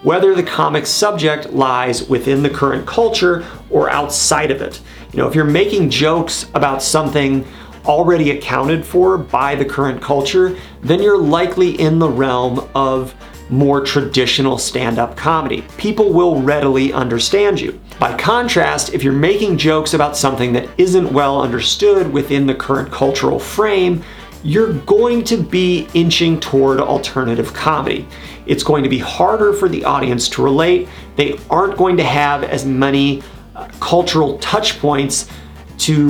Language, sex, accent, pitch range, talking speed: English, male, American, 135-175 Hz, 150 wpm